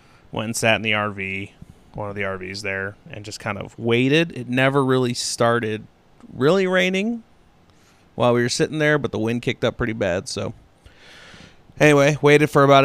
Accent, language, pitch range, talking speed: American, English, 110-130 Hz, 180 wpm